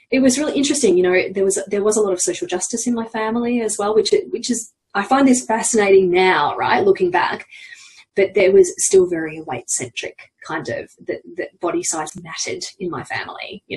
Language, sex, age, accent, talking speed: English, female, 20-39, Australian, 220 wpm